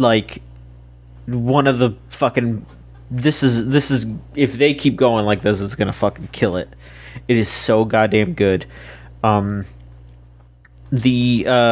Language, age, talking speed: English, 30-49, 140 wpm